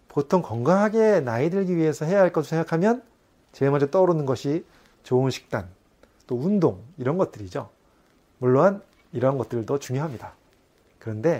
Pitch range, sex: 120-165 Hz, male